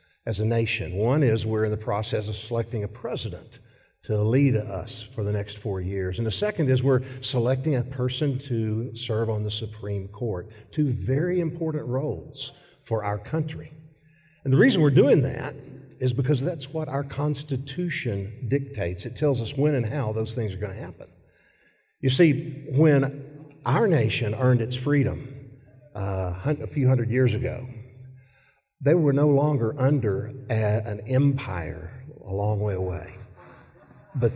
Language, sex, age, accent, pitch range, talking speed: English, male, 50-69, American, 110-135 Hz, 160 wpm